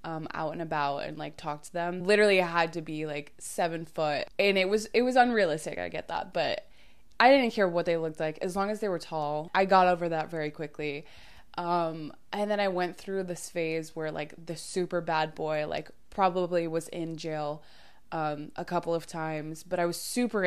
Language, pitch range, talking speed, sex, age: English, 160-190 Hz, 215 wpm, female, 20-39